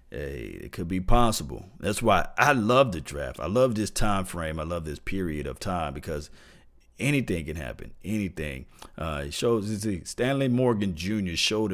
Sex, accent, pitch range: male, American, 80-105 Hz